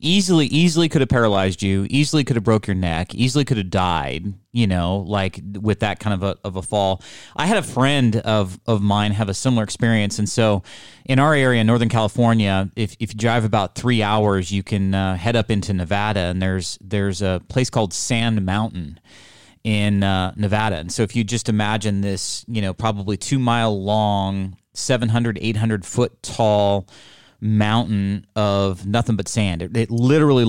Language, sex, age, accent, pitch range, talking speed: English, male, 30-49, American, 100-115 Hz, 190 wpm